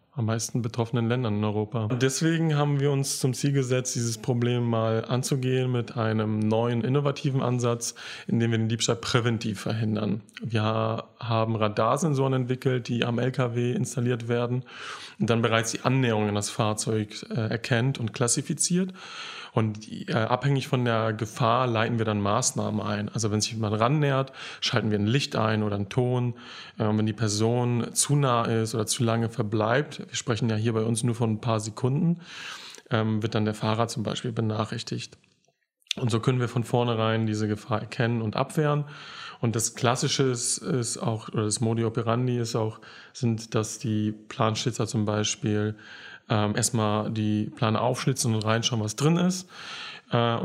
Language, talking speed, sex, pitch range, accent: German, 175 wpm, male, 110-125 Hz, German